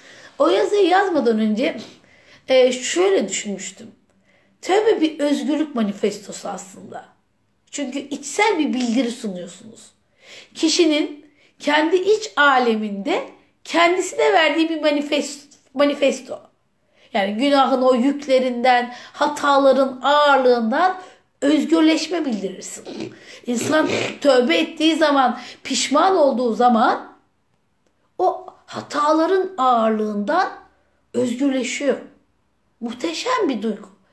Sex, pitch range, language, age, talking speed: female, 260-335 Hz, Turkish, 60-79, 80 wpm